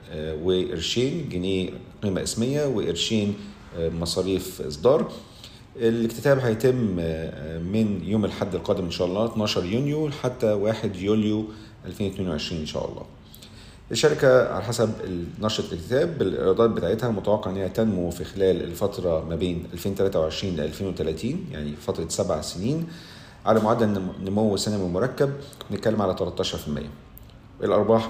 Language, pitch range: Arabic, 90-110 Hz